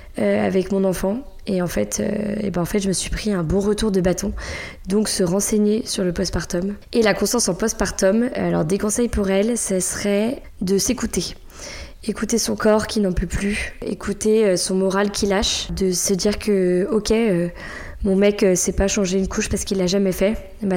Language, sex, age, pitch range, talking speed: French, female, 20-39, 190-210 Hz, 215 wpm